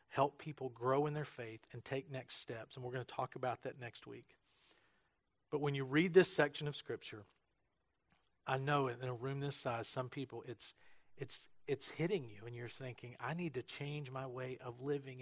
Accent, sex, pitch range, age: American, male, 125-145 Hz, 40-59